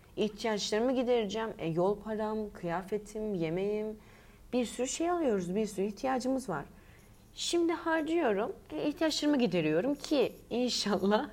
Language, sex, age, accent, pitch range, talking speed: Turkish, female, 30-49, native, 170-235 Hz, 115 wpm